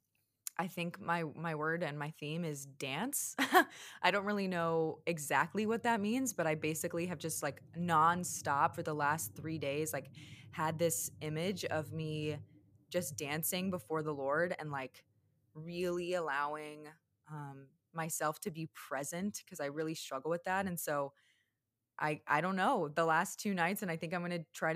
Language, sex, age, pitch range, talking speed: English, female, 20-39, 150-175 Hz, 175 wpm